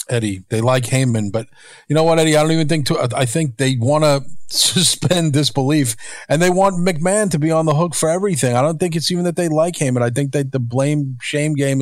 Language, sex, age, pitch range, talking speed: English, male, 40-59, 125-150 Hz, 245 wpm